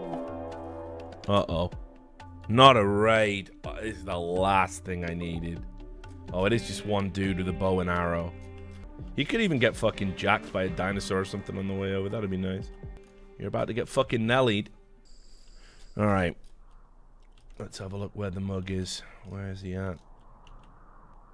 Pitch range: 95-115 Hz